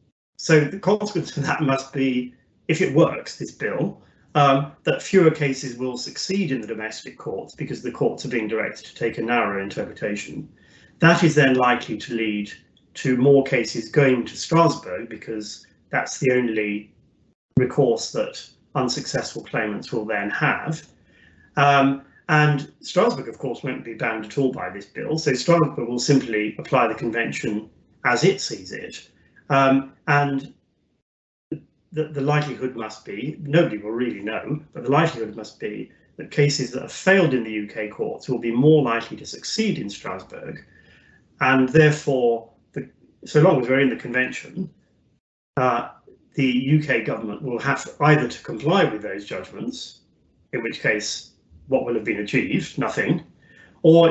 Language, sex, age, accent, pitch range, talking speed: English, male, 30-49, British, 115-150 Hz, 160 wpm